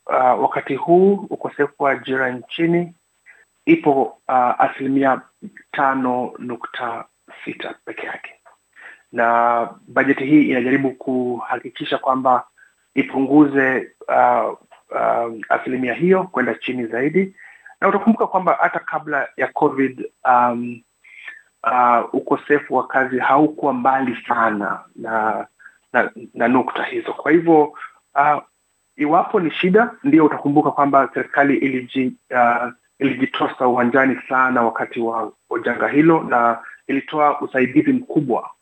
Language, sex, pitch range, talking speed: Swahili, male, 125-150 Hz, 110 wpm